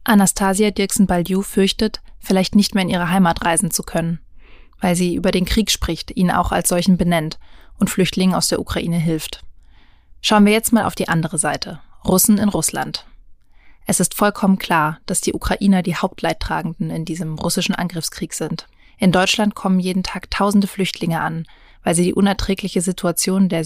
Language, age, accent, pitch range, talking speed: German, 20-39, German, 170-200 Hz, 175 wpm